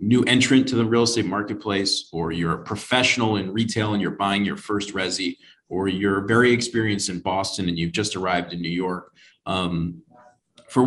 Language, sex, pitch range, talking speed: English, male, 90-110 Hz, 190 wpm